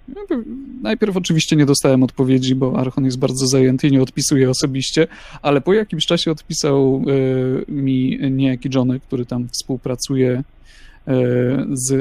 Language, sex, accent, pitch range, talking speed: Polish, male, native, 130-165 Hz, 130 wpm